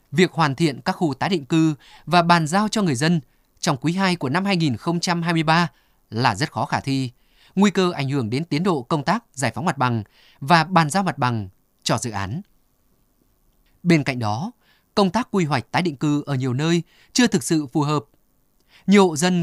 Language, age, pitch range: Vietnamese, 20-39, 140-185 Hz